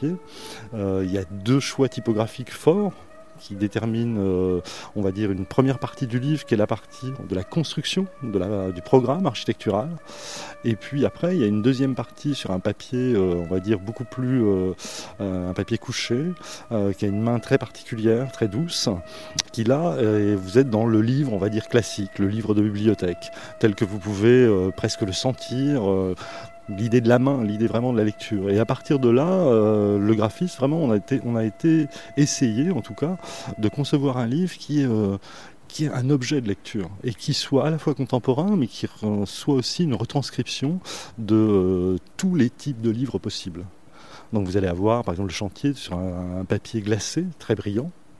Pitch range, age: 105-140 Hz, 30-49